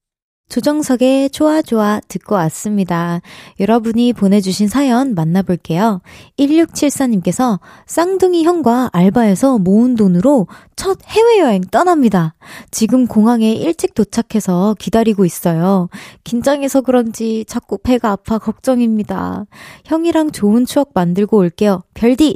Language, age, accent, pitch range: Korean, 20-39, native, 185-255 Hz